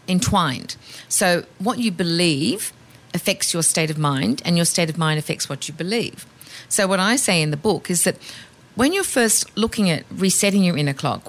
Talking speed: 195 wpm